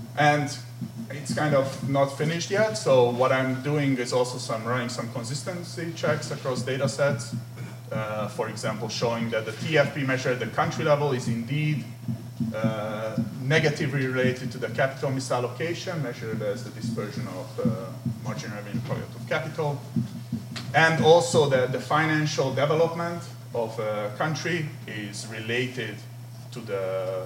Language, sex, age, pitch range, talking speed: French, male, 30-49, 120-145 Hz, 145 wpm